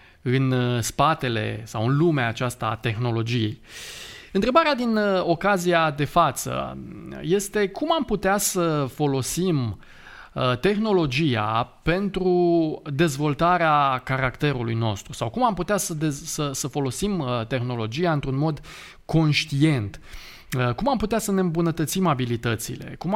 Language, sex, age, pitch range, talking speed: Romanian, male, 20-39, 125-170 Hz, 110 wpm